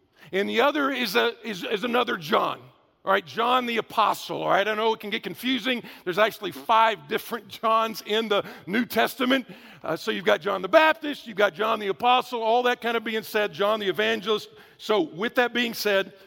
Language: English